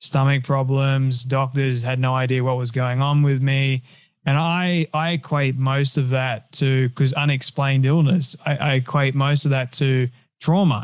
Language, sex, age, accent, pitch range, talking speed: English, male, 20-39, Australian, 130-150 Hz, 170 wpm